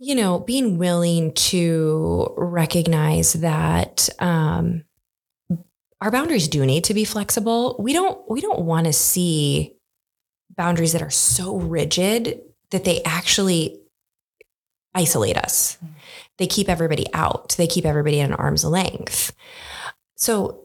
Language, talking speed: English, 130 wpm